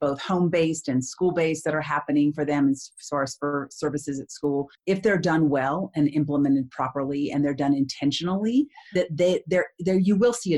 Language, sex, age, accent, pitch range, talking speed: English, female, 40-59, American, 140-175 Hz, 200 wpm